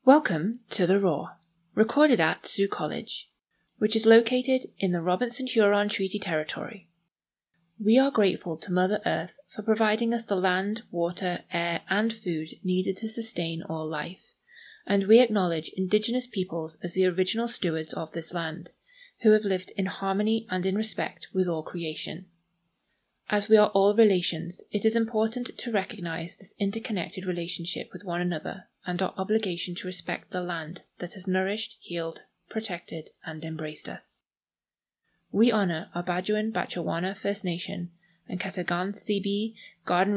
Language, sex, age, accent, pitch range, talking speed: English, female, 20-39, British, 170-210 Hz, 150 wpm